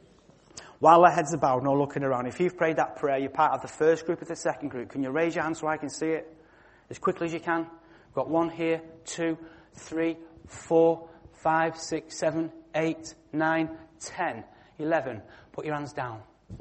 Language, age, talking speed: English, 30-49, 200 wpm